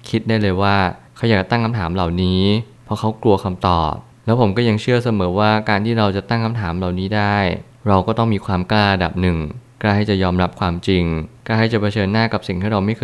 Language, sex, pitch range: Thai, male, 95-115 Hz